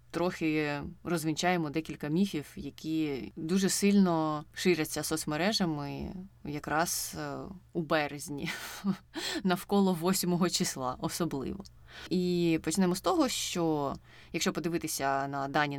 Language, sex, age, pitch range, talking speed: Ukrainian, female, 20-39, 150-185 Hz, 95 wpm